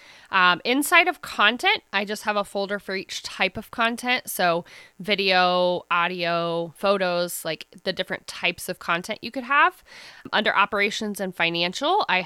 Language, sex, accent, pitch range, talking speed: English, female, American, 180-240 Hz, 155 wpm